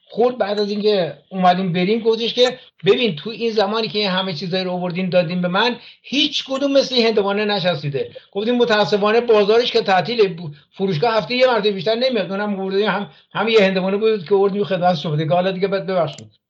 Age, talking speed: 60-79, 195 wpm